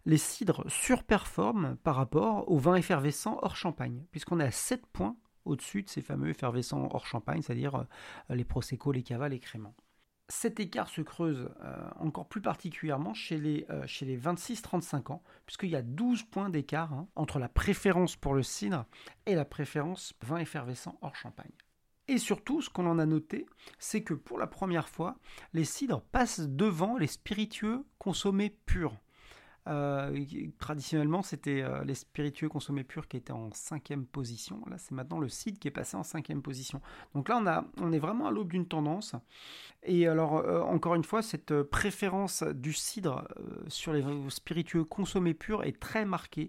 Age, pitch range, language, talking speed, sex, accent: 40-59, 140-190 Hz, French, 180 wpm, male, French